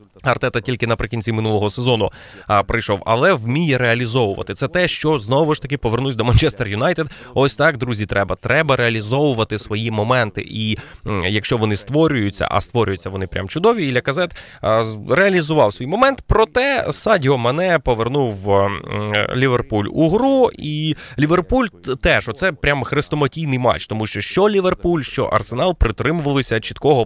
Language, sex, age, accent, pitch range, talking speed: Ukrainian, male, 20-39, native, 110-150 Hz, 145 wpm